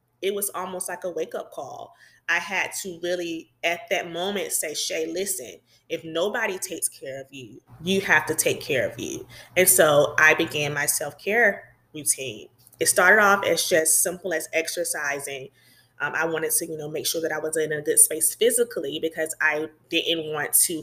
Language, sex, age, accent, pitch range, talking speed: English, female, 20-39, American, 155-185 Hz, 190 wpm